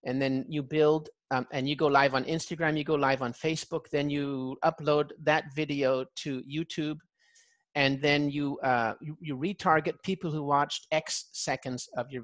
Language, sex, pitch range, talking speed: English, male, 140-175 Hz, 180 wpm